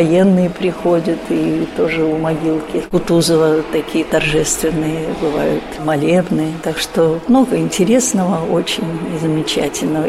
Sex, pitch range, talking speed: female, 165-205 Hz, 100 wpm